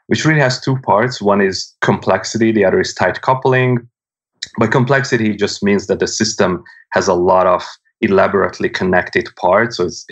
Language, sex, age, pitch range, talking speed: English, male, 30-49, 95-120 Hz, 170 wpm